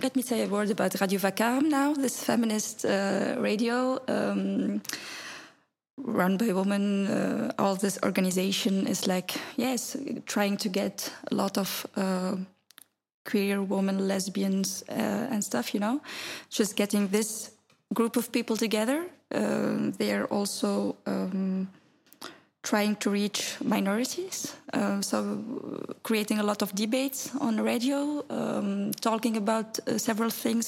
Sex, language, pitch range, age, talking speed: female, English, 200-245 Hz, 20-39, 140 wpm